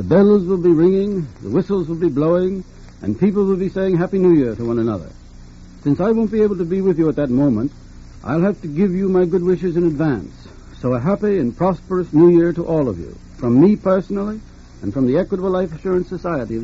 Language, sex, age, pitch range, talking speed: English, male, 60-79, 150-200 Hz, 235 wpm